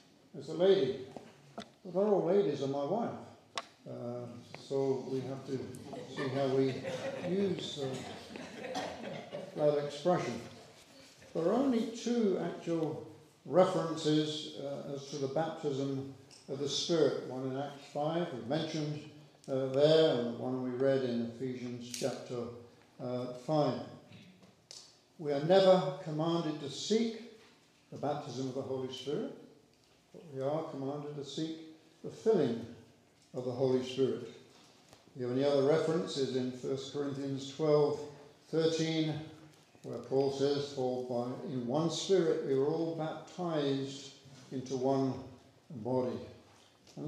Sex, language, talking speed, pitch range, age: male, English, 130 wpm, 135-160 Hz, 60-79